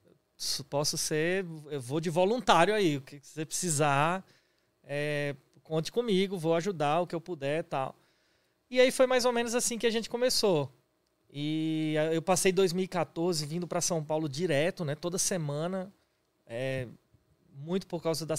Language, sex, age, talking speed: Portuguese, male, 20-39, 160 wpm